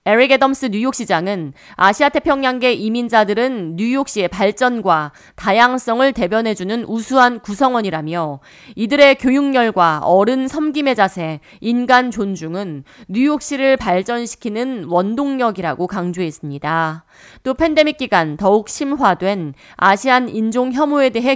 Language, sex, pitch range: Korean, female, 185-260 Hz